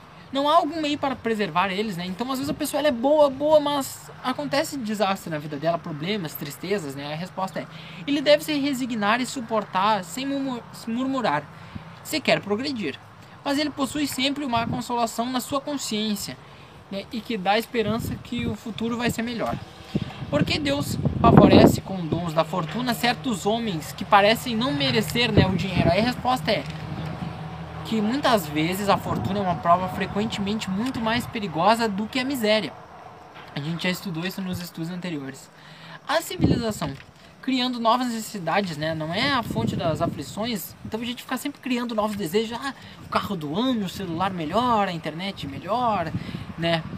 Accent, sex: Brazilian, male